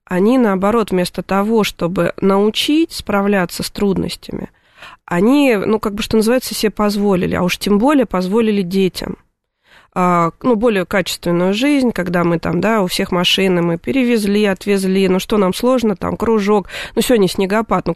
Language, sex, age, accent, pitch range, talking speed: Russian, female, 20-39, native, 185-220 Hz, 155 wpm